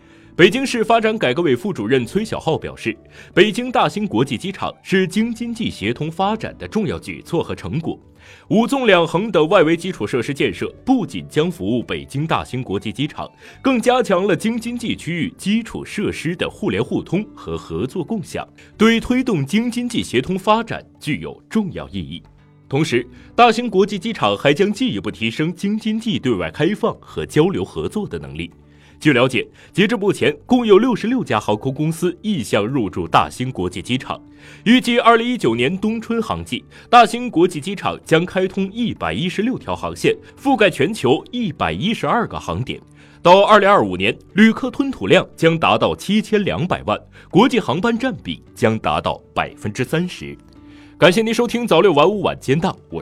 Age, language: 30-49, Chinese